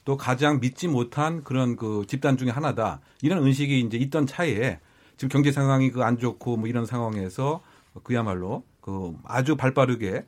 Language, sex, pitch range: Korean, male, 120-150 Hz